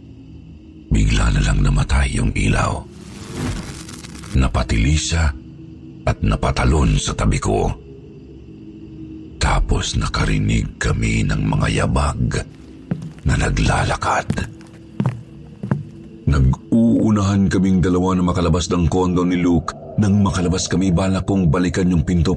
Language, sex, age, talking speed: Filipino, male, 50-69, 100 wpm